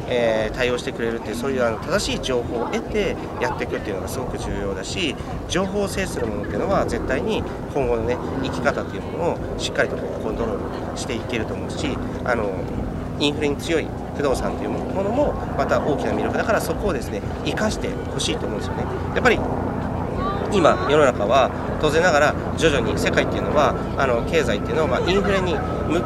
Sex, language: male, Japanese